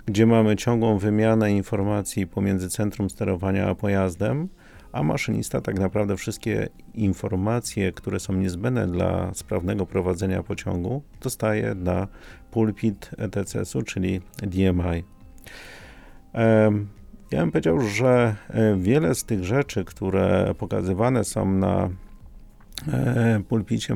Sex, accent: male, native